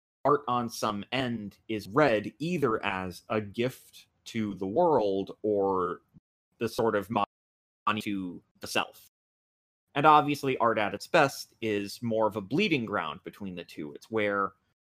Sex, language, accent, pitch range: male, English, American, 100-120 Hz